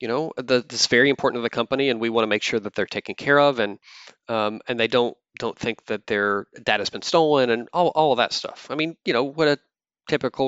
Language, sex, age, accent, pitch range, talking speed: English, male, 30-49, American, 110-135 Hz, 270 wpm